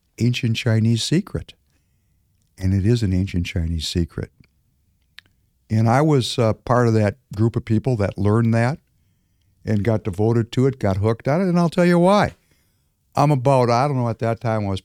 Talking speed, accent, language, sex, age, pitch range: 190 wpm, American, English, male, 60-79, 95-135 Hz